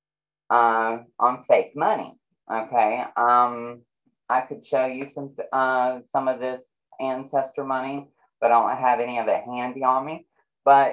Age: 30-49